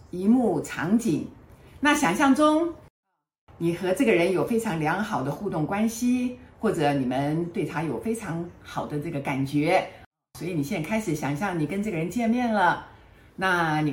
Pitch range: 160-265 Hz